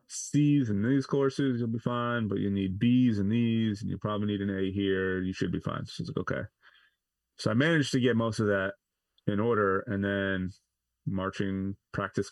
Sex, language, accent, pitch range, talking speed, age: male, English, American, 95-110 Hz, 210 wpm, 30-49